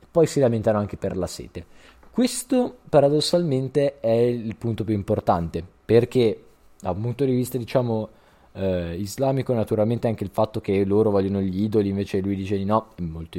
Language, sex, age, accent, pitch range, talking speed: Italian, male, 20-39, native, 100-125 Hz, 175 wpm